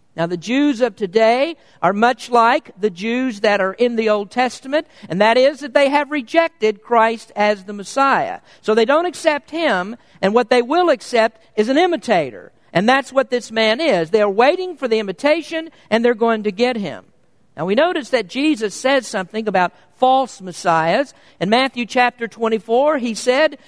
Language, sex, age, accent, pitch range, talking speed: English, male, 50-69, American, 205-270 Hz, 190 wpm